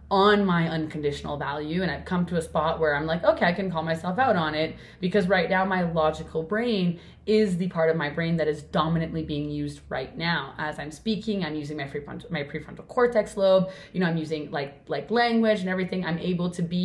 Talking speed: 230 wpm